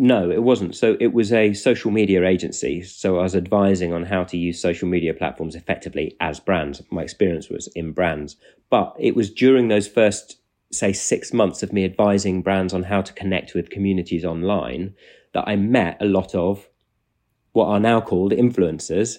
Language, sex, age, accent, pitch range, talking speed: English, male, 30-49, British, 90-105 Hz, 190 wpm